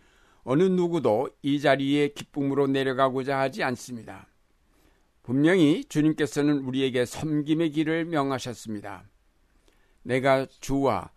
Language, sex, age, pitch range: Korean, male, 60-79, 115-145 Hz